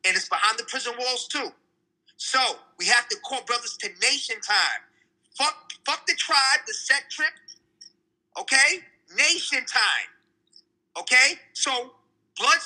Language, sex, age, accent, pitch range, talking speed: English, male, 30-49, American, 295-390 Hz, 135 wpm